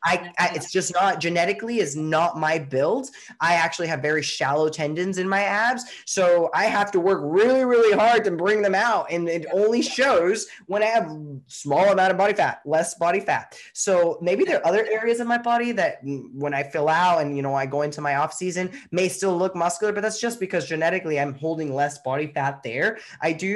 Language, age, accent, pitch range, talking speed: English, 10-29, American, 165-215 Hz, 220 wpm